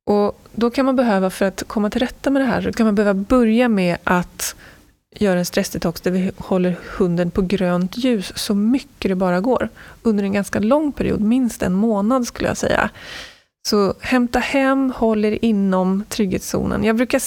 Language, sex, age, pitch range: Swedish, female, 20-39, 180-230 Hz